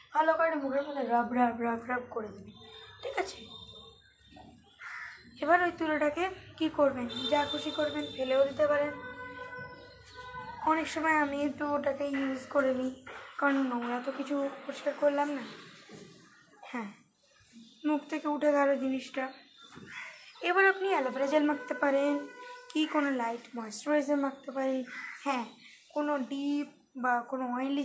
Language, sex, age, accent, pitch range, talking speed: Bengali, female, 20-39, native, 255-305 Hz, 130 wpm